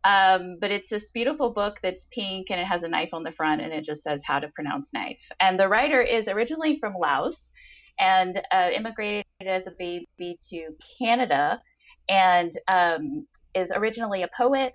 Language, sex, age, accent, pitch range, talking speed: Czech, female, 20-39, American, 165-225 Hz, 185 wpm